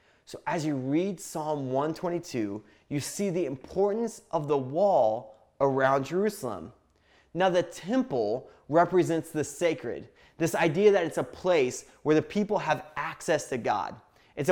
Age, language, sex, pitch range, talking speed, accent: 20-39, English, male, 140-190 Hz, 145 wpm, American